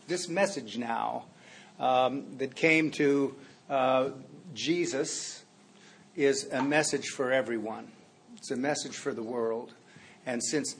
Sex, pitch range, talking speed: male, 130-155 Hz, 120 wpm